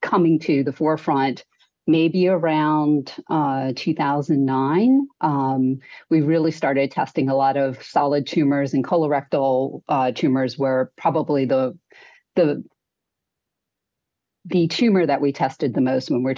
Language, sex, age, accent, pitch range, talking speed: English, female, 40-59, American, 135-180 Hz, 130 wpm